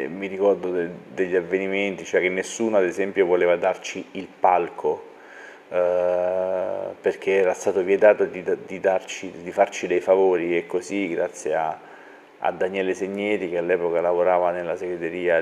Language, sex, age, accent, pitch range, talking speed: Italian, male, 30-49, native, 90-110 Hz, 145 wpm